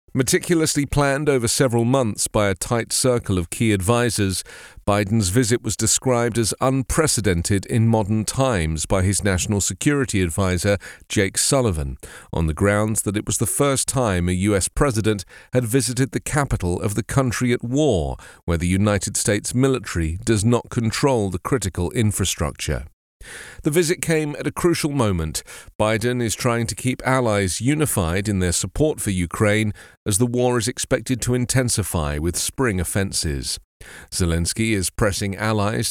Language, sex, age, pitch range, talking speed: English, male, 40-59, 95-130 Hz, 155 wpm